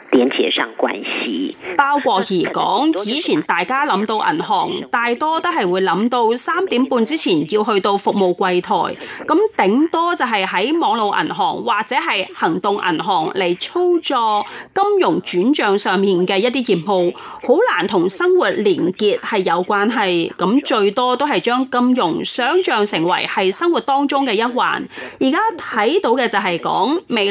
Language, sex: Chinese, female